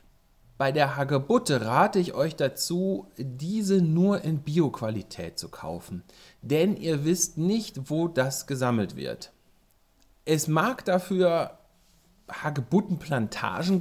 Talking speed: 110 wpm